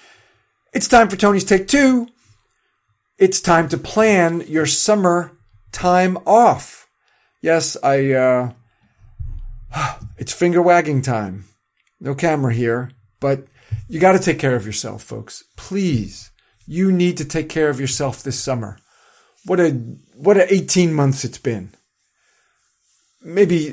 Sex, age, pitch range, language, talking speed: male, 40-59, 135-205 Hz, English, 130 wpm